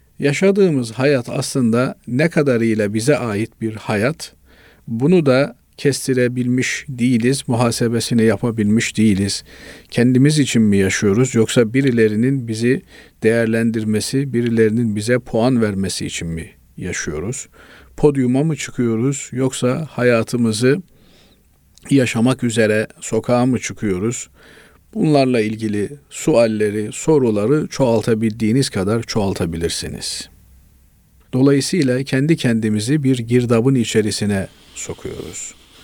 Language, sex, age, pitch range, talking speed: Turkish, male, 50-69, 110-130 Hz, 90 wpm